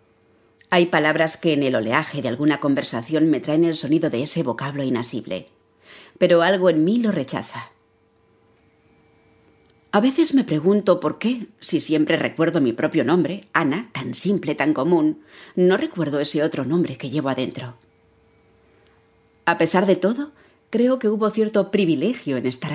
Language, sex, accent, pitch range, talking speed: Spanish, female, Spanish, 120-180 Hz, 155 wpm